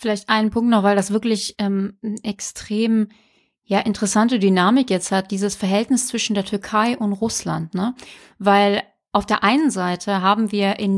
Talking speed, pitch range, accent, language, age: 170 wpm, 195-230 Hz, German, German, 30-49